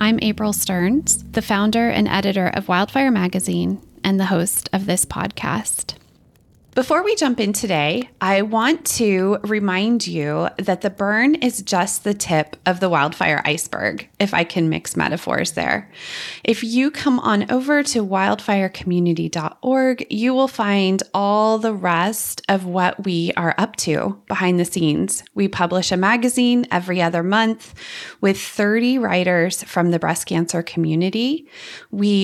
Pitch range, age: 180-225 Hz, 20-39